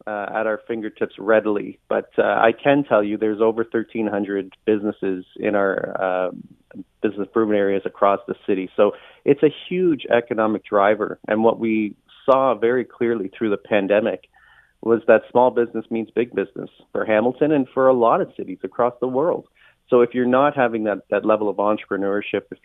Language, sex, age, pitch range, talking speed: English, male, 40-59, 105-125 Hz, 180 wpm